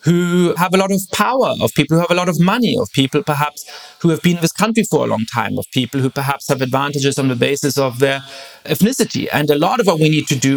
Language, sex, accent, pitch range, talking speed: English, male, German, 140-175 Hz, 275 wpm